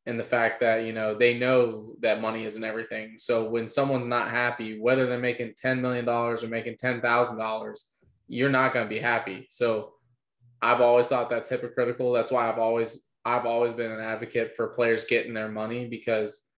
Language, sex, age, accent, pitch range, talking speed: English, male, 20-39, American, 115-125 Hz, 190 wpm